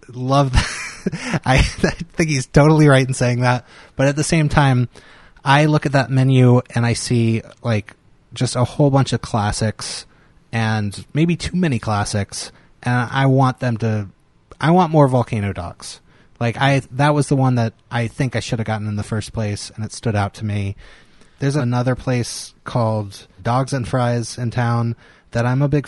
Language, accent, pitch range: English, American, 110-130 Hz